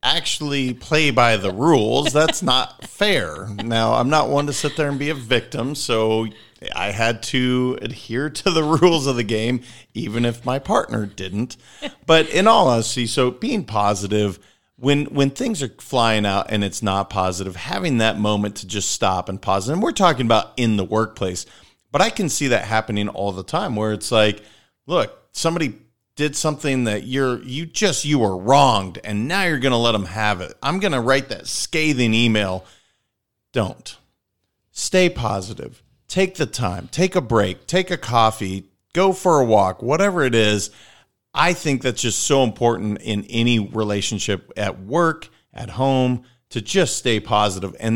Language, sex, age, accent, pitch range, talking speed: English, male, 40-59, American, 105-140 Hz, 180 wpm